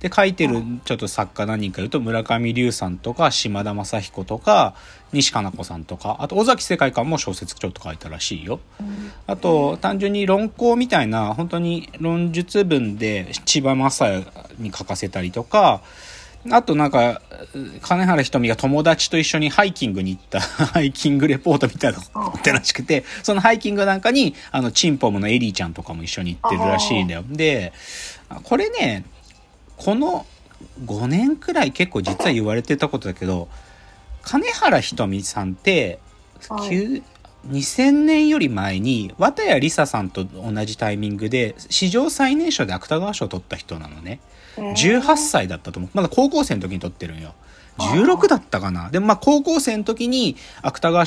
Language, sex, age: Japanese, male, 40-59